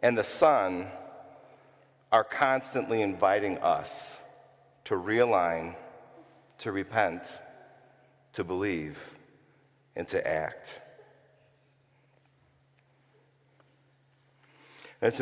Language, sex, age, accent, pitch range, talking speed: English, male, 50-69, American, 120-140 Hz, 65 wpm